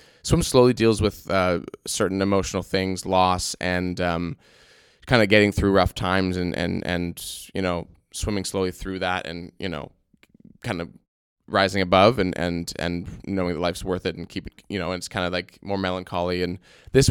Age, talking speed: 20-39, 195 wpm